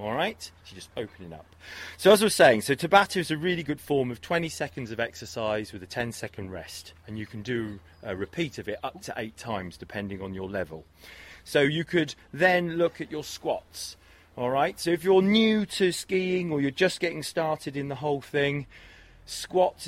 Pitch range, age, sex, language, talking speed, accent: 100-155 Hz, 30-49, male, English, 215 wpm, British